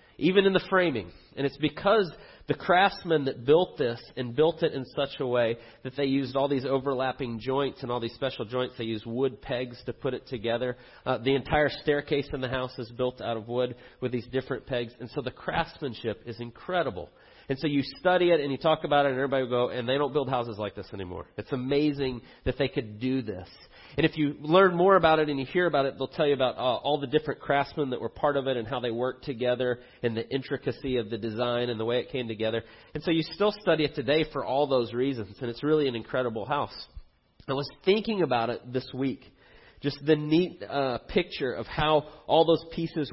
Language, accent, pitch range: English, American, 120-145 Hz